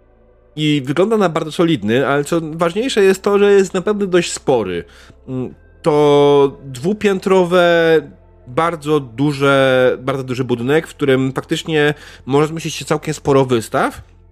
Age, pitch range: 30-49, 125-165 Hz